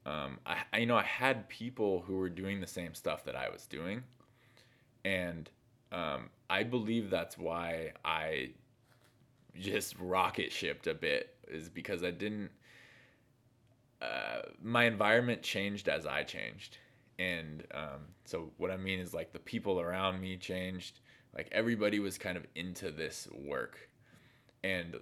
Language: English